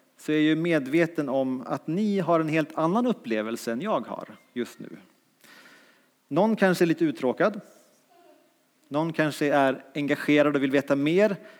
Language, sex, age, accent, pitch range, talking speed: English, male, 30-49, Norwegian, 140-205 Hz, 155 wpm